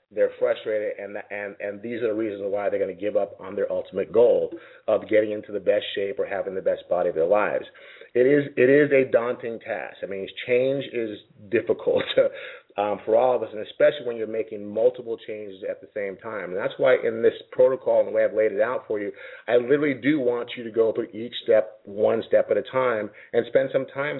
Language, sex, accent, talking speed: English, male, American, 235 wpm